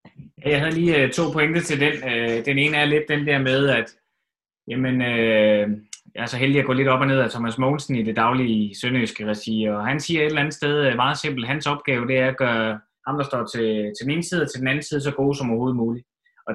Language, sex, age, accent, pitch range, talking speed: Danish, male, 20-39, native, 115-150 Hz, 245 wpm